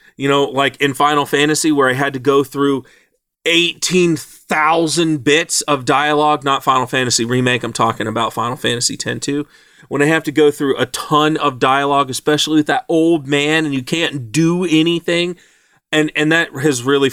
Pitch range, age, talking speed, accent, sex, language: 130-175 Hz, 30-49, 180 wpm, American, male, English